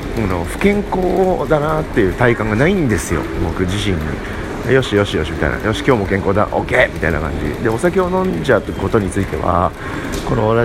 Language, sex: Japanese, male